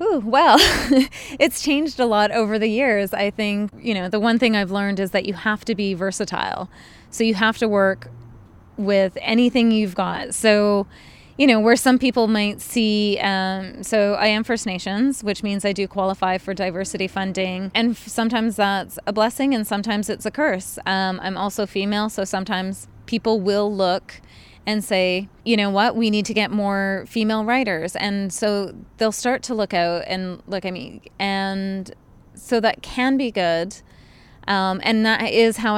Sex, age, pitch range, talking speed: female, 20-39, 195-225 Hz, 180 wpm